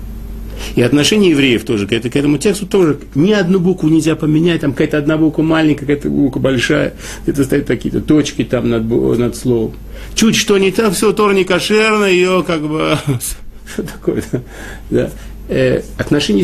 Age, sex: 50-69, male